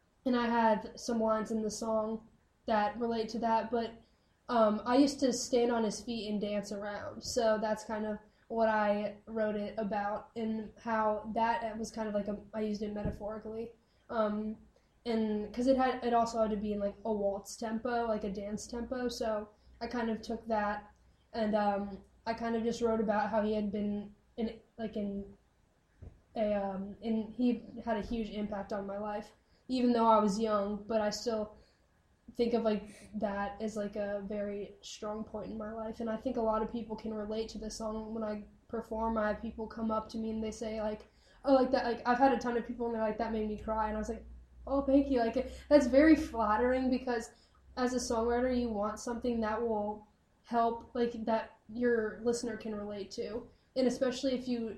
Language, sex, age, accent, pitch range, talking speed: English, female, 10-29, American, 210-235 Hz, 210 wpm